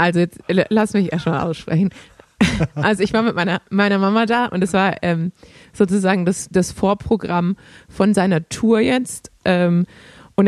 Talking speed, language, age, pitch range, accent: 165 wpm, German, 30-49, 175-205 Hz, German